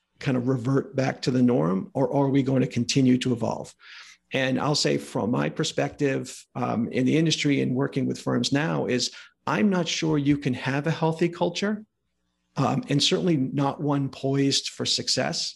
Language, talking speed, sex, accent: English, 185 wpm, male, American